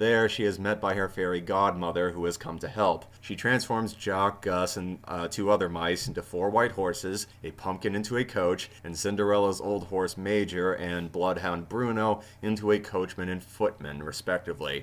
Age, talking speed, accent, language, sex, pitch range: 30-49, 180 wpm, American, English, male, 90-105 Hz